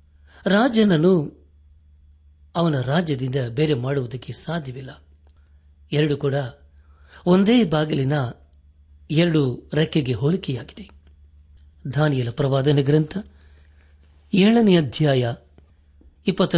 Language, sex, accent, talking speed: Kannada, male, native, 70 wpm